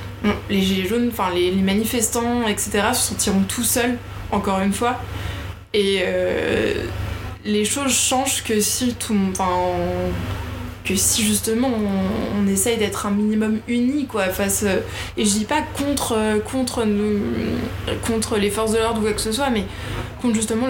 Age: 20-39